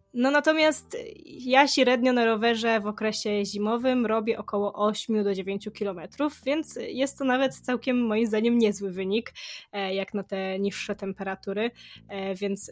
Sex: female